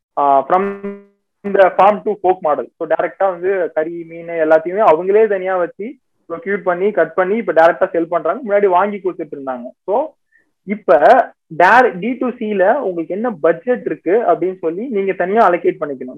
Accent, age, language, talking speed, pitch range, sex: native, 20-39, Tamil, 135 wpm, 170-220 Hz, male